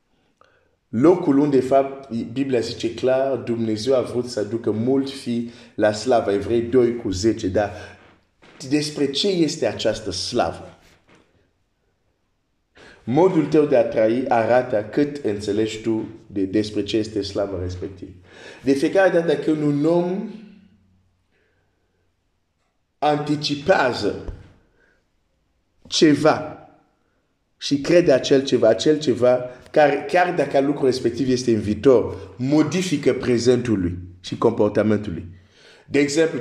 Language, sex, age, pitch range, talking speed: Romanian, male, 50-69, 105-145 Hz, 75 wpm